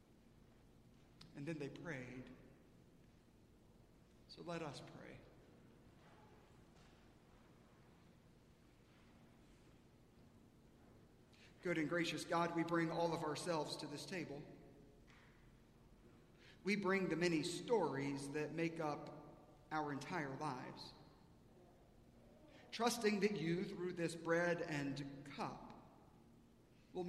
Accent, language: American, English